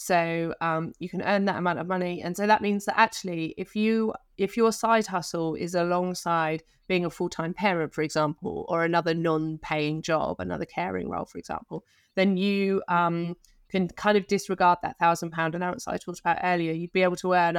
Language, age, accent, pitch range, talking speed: English, 30-49, British, 160-180 Hz, 200 wpm